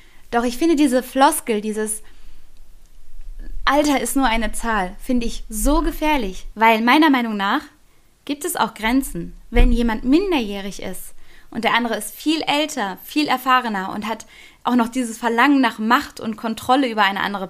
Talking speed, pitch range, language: 165 wpm, 210-265 Hz, German